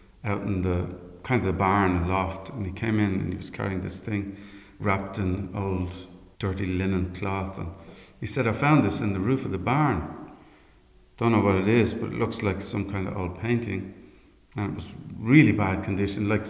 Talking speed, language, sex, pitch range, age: 205 wpm, English, male, 95-115 Hz, 50-69